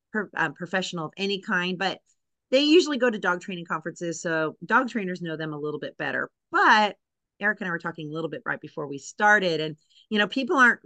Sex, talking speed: female, 215 wpm